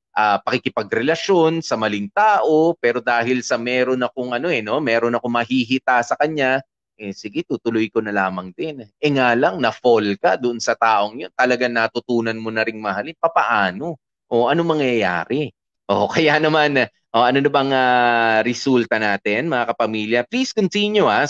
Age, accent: 30-49, native